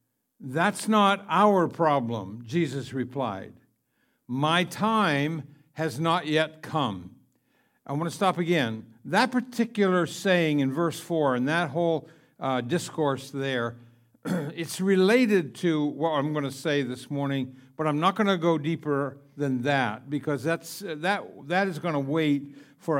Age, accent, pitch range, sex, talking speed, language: 60-79, American, 140-180 Hz, male, 150 wpm, English